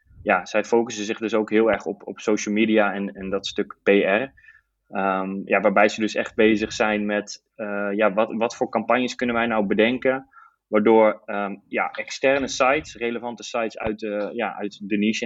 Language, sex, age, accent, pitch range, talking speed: Dutch, male, 20-39, Dutch, 105-115 Hz, 175 wpm